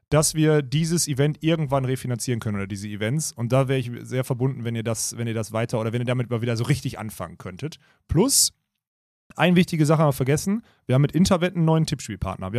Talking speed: 225 wpm